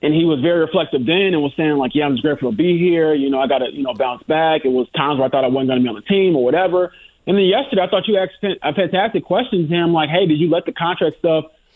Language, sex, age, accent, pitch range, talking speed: English, male, 20-39, American, 150-185 Hz, 315 wpm